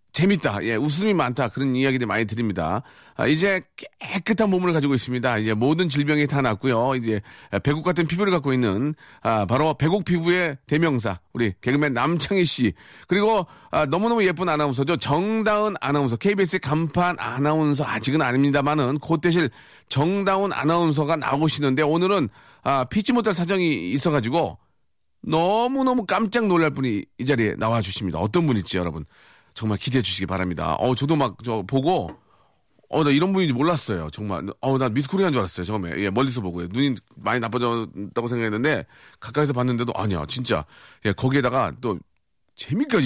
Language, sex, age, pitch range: Korean, male, 40-59, 115-175 Hz